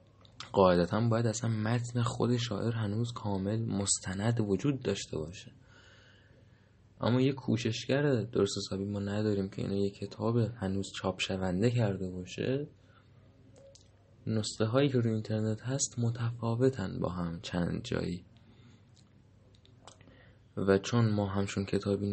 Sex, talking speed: male, 115 wpm